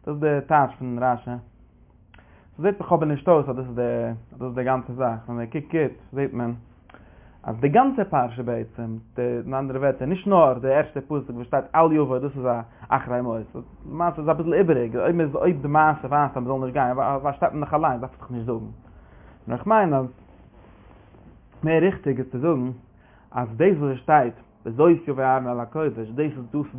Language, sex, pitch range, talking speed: English, male, 120-150 Hz, 150 wpm